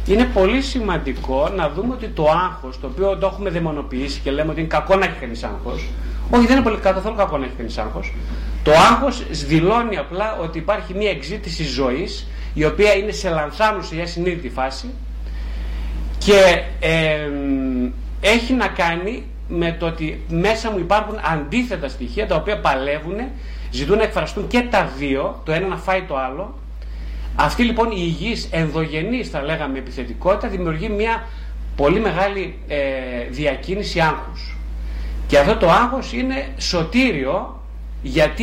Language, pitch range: Greek, 125-200 Hz